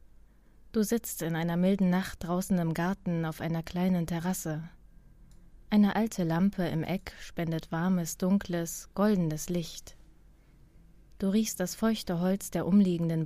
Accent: German